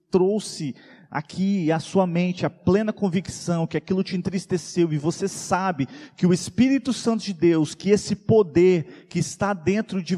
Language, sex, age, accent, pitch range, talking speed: Portuguese, male, 40-59, Brazilian, 135-190 Hz, 165 wpm